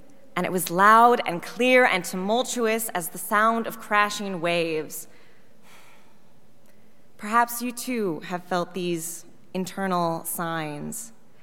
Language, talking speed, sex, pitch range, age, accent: English, 115 wpm, female, 175-230 Hz, 20-39, American